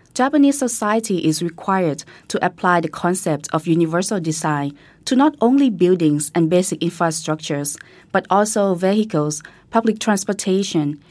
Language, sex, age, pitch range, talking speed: English, female, 20-39, 160-195 Hz, 125 wpm